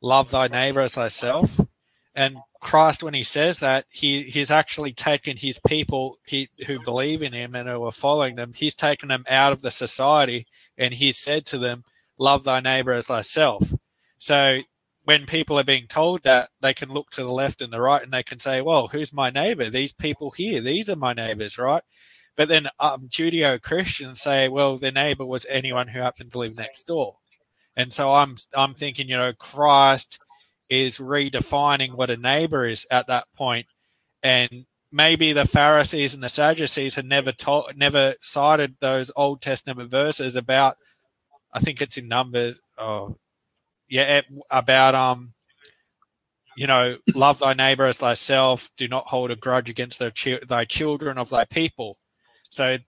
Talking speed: 175 wpm